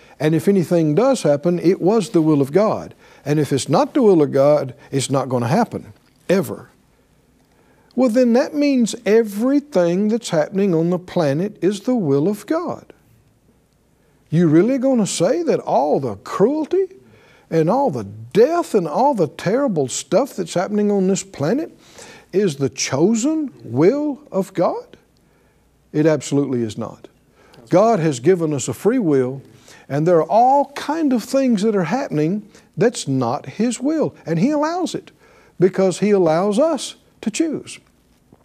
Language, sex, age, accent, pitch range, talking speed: English, male, 60-79, American, 165-240 Hz, 160 wpm